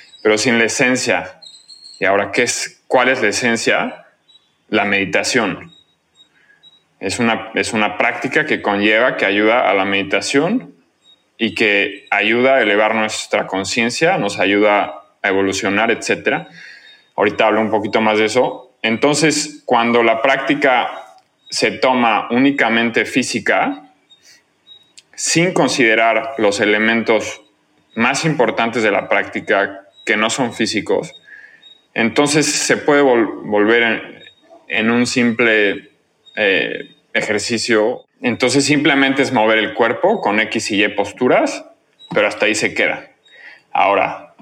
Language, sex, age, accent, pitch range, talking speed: Spanish, male, 30-49, Mexican, 105-130 Hz, 125 wpm